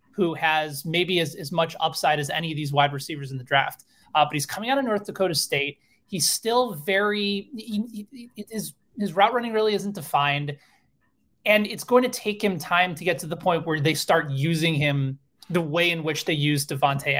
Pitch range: 150-205 Hz